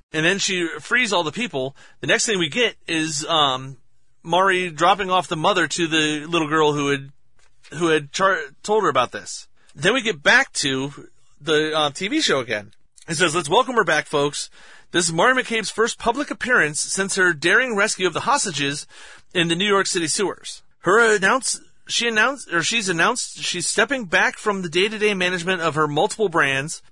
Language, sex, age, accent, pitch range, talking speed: English, male, 40-59, American, 150-205 Hz, 195 wpm